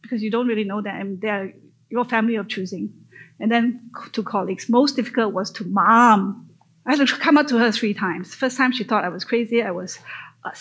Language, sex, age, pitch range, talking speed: Filipino, female, 30-49, 205-255 Hz, 225 wpm